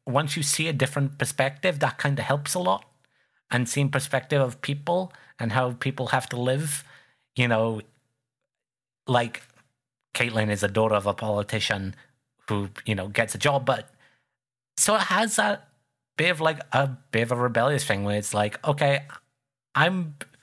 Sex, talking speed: male, 170 wpm